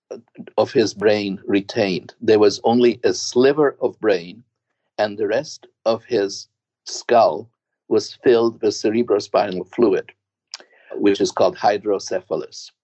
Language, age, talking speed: English, 50-69, 120 wpm